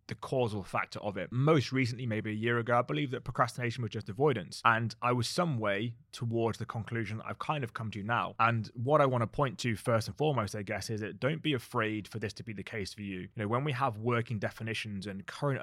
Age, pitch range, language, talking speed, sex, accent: 20-39, 105-125 Hz, English, 255 wpm, male, British